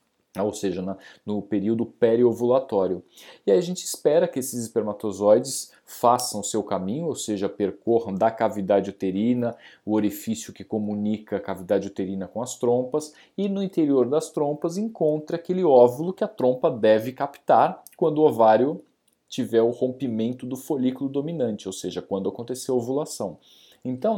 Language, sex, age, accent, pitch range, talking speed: Portuguese, male, 40-59, Brazilian, 105-150 Hz, 150 wpm